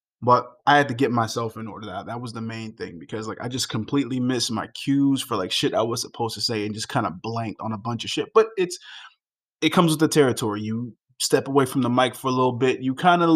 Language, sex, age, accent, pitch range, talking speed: English, male, 20-39, American, 115-150 Hz, 260 wpm